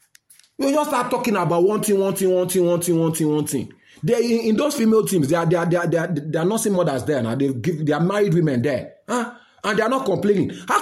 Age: 30-49